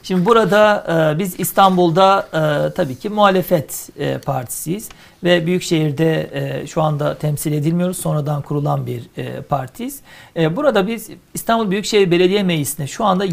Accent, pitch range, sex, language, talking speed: native, 155-195 Hz, male, Turkish, 145 wpm